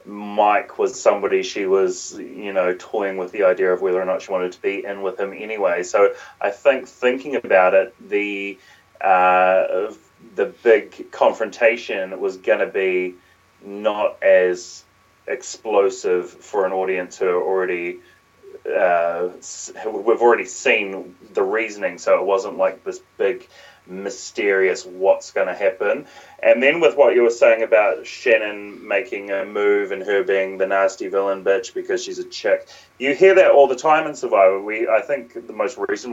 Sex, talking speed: male, 165 wpm